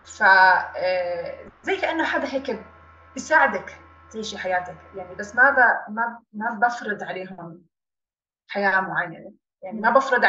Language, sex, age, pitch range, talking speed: English, female, 20-39, 185-250 Hz, 115 wpm